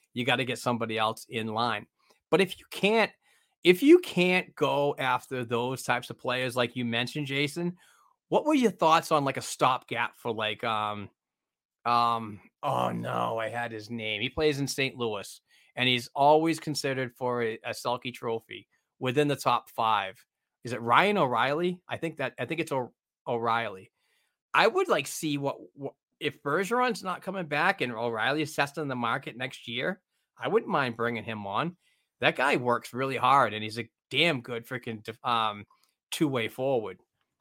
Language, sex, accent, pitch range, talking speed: English, male, American, 115-150 Hz, 180 wpm